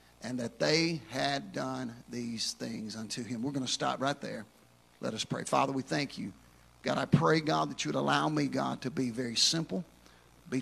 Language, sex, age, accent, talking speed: English, male, 50-69, American, 210 wpm